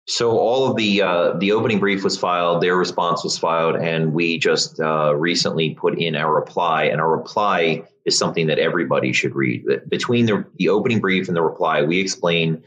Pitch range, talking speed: 80-110 Hz, 200 wpm